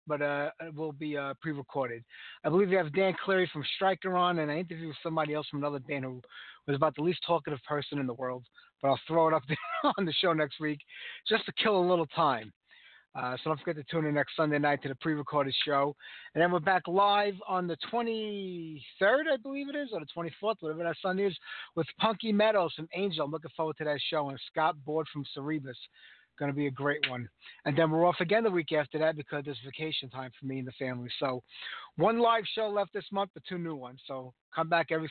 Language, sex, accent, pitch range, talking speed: English, male, American, 145-180 Hz, 240 wpm